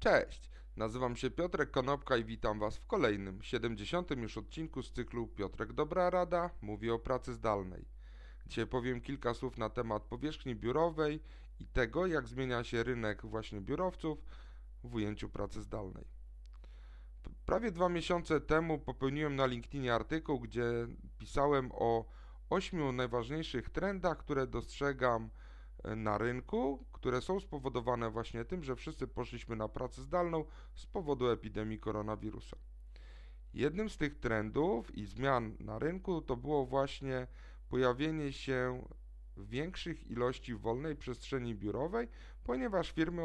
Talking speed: 130 wpm